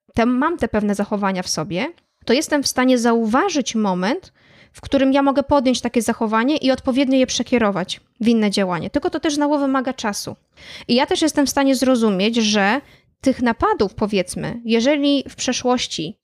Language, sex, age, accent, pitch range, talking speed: Polish, female, 20-39, native, 210-265 Hz, 170 wpm